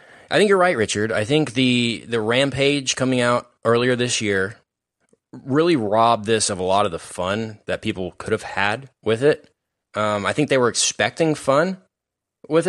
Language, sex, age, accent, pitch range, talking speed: English, male, 10-29, American, 100-130 Hz, 185 wpm